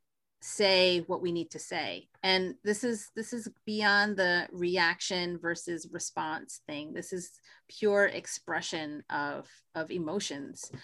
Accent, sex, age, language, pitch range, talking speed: American, female, 30-49, English, 165-225 Hz, 135 wpm